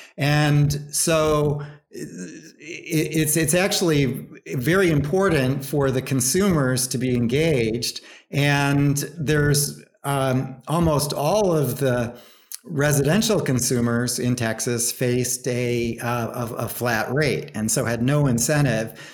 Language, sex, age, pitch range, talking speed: English, male, 40-59, 120-150 Hz, 115 wpm